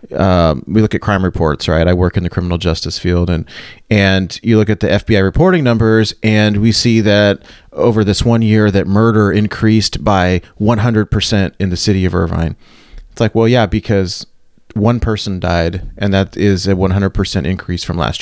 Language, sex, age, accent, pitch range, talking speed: English, male, 30-49, American, 90-115 Hz, 190 wpm